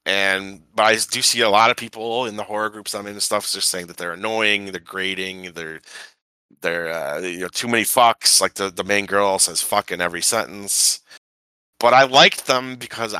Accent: American